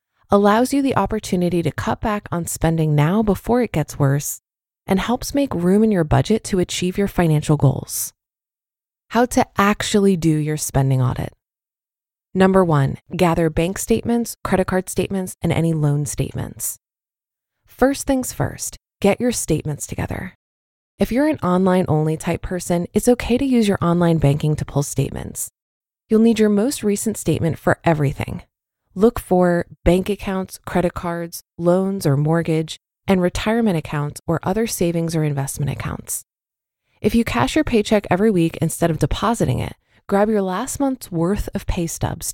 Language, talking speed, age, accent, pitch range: English, 160 wpm, 20-39, American, 155-210 Hz